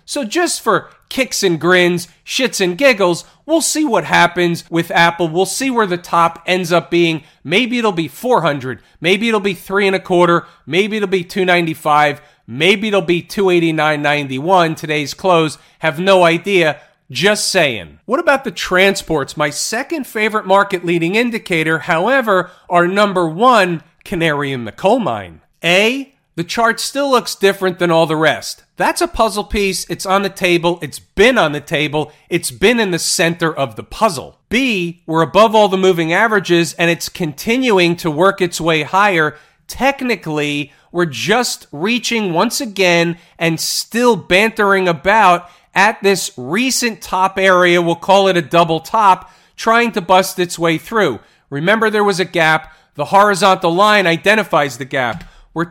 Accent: American